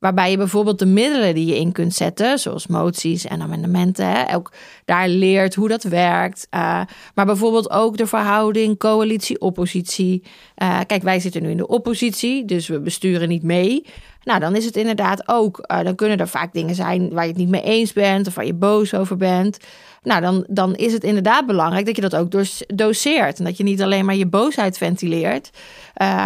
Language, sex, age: Dutch, female, 30-49